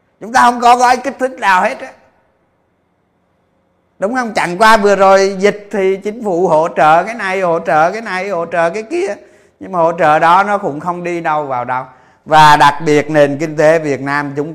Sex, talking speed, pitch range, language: male, 220 wpm, 140-195 Hz, Vietnamese